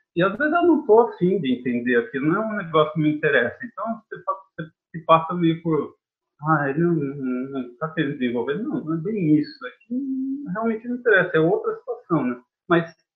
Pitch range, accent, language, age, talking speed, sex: 145-240 Hz, Brazilian, Portuguese, 40-59, 200 wpm, male